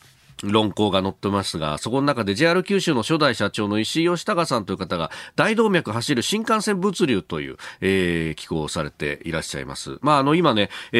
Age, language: 40-59, Japanese